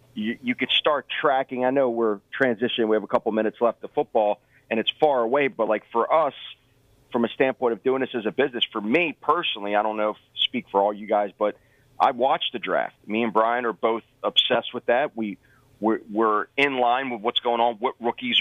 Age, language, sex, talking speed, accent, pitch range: 40-59, English, male, 230 wpm, American, 110-130 Hz